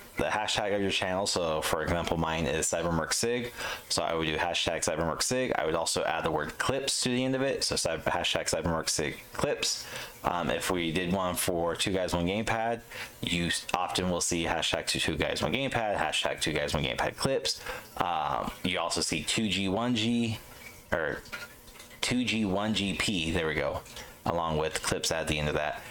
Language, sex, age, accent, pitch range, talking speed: English, male, 30-49, American, 80-110 Hz, 180 wpm